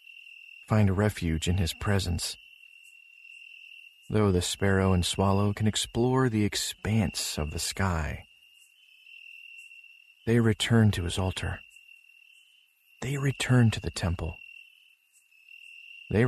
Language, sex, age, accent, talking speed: English, male, 40-59, American, 105 wpm